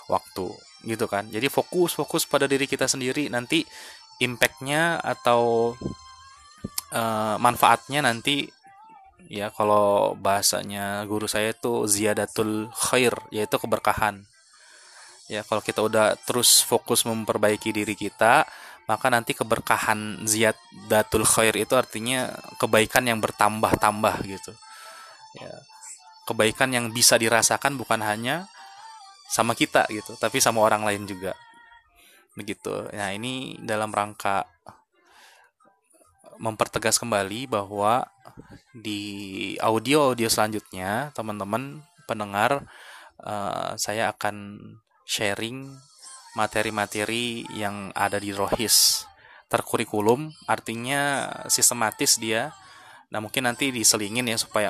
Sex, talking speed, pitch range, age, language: male, 100 wpm, 105-130 Hz, 20-39, Indonesian